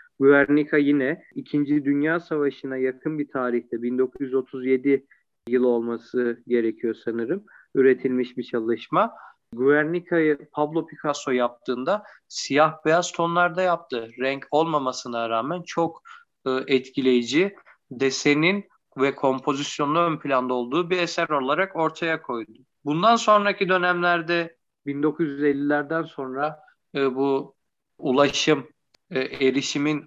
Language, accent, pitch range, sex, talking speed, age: Turkish, native, 130-165 Hz, male, 100 wpm, 40-59